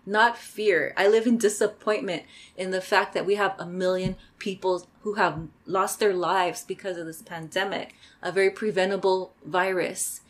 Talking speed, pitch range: 165 wpm, 180-215 Hz